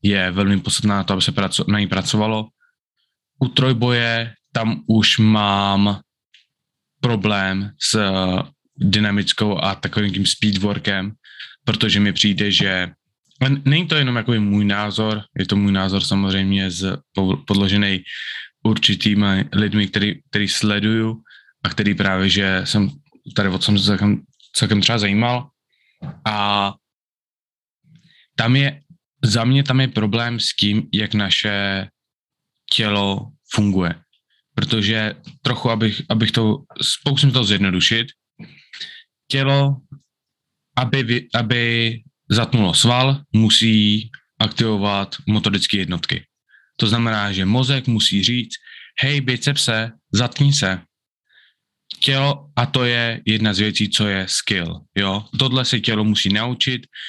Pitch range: 100-125 Hz